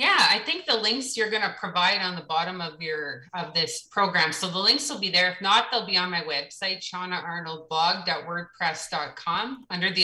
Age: 30-49